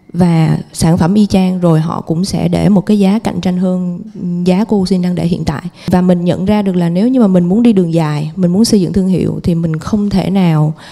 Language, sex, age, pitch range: Vietnamese, female, 20-39, 175-210 Hz